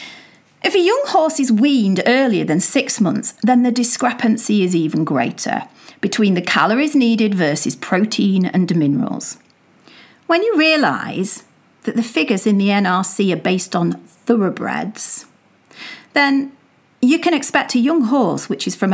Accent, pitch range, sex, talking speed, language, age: British, 190-265 Hz, female, 150 wpm, English, 40-59